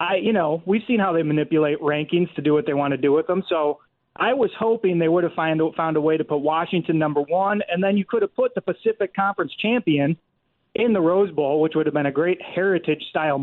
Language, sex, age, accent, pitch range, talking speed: English, male, 30-49, American, 155-190 Hz, 245 wpm